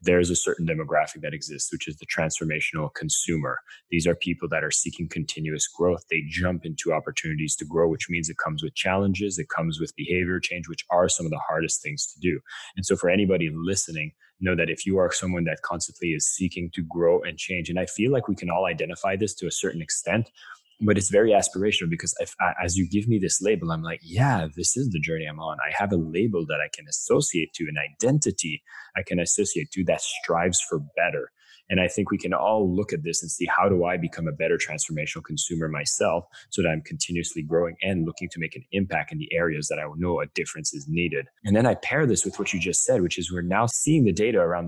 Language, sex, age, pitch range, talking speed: English, male, 20-39, 85-105 Hz, 240 wpm